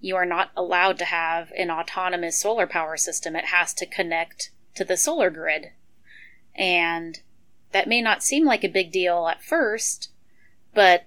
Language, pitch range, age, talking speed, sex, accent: English, 165-195 Hz, 30-49, 170 wpm, female, American